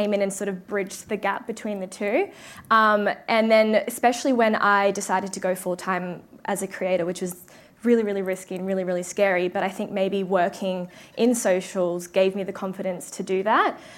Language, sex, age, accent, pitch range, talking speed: English, female, 20-39, Australian, 195-225 Hz, 200 wpm